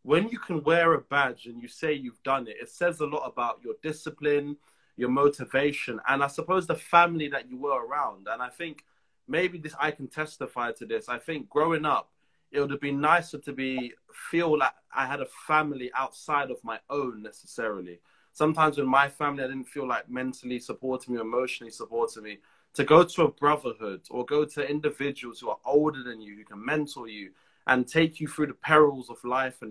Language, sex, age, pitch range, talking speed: English, male, 20-39, 125-160 Hz, 210 wpm